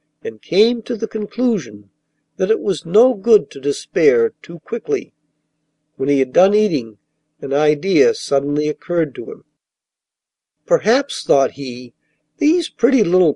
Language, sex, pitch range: Japanese, male, 150-230 Hz